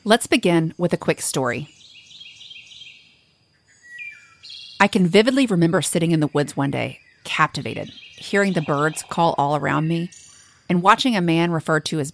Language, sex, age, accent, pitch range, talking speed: English, female, 30-49, American, 140-185 Hz, 155 wpm